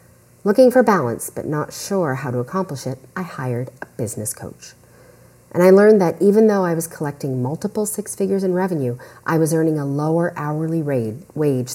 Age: 40-59